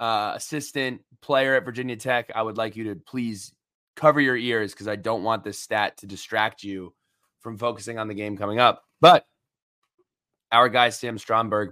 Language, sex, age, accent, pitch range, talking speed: English, male, 20-39, American, 110-175 Hz, 185 wpm